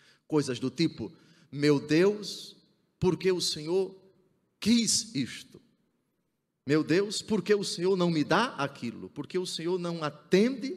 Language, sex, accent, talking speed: Portuguese, male, Brazilian, 150 wpm